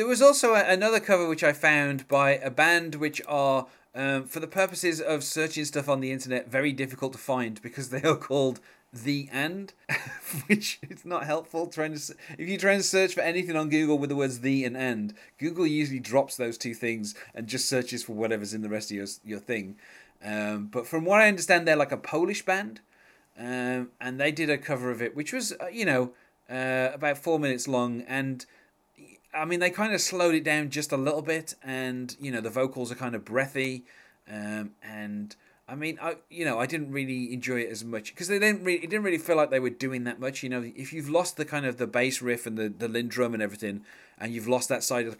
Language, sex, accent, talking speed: English, male, British, 230 wpm